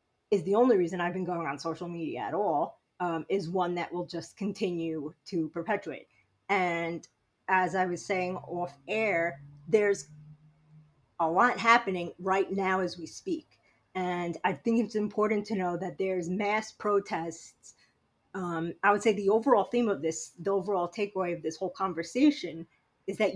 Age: 30-49